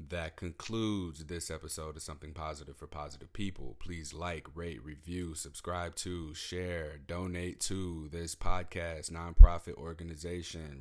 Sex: male